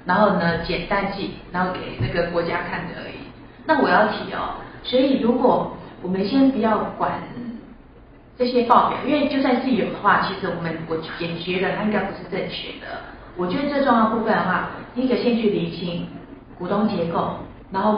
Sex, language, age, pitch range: female, Chinese, 40-59, 180-245 Hz